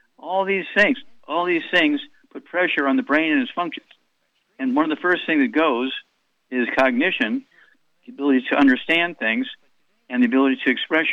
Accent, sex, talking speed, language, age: American, male, 185 wpm, English, 60-79